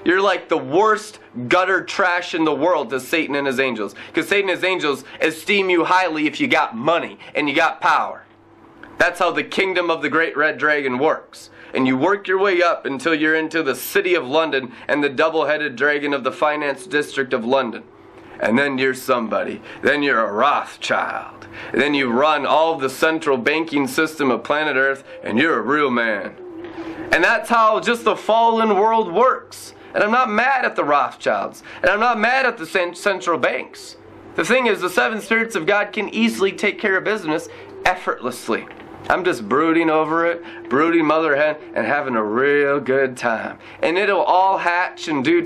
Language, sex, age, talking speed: English, male, 30-49, 190 wpm